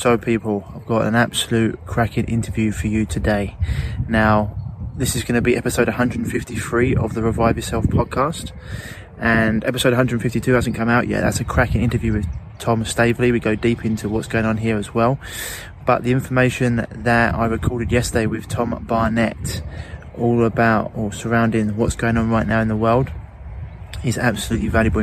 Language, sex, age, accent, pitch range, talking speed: English, male, 20-39, British, 105-115 Hz, 175 wpm